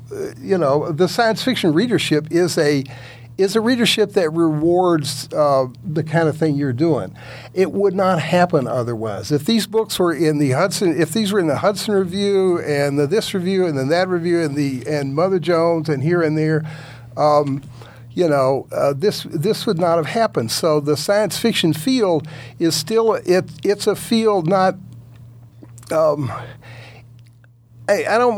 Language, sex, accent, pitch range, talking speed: English, male, American, 140-190 Hz, 175 wpm